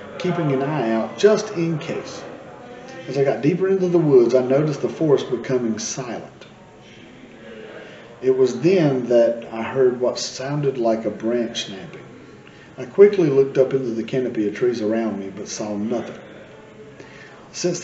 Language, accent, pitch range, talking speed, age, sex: English, American, 115-150 Hz, 160 wpm, 40-59, male